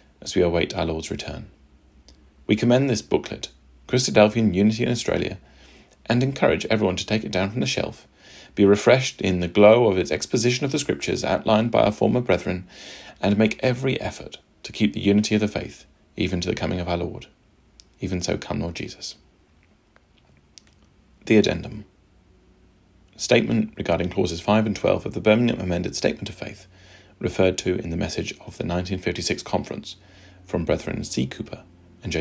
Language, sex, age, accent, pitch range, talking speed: English, male, 40-59, British, 80-110 Hz, 175 wpm